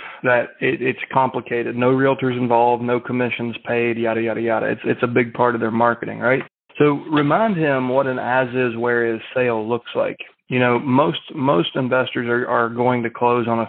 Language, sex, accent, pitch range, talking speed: English, male, American, 115-130 Hz, 195 wpm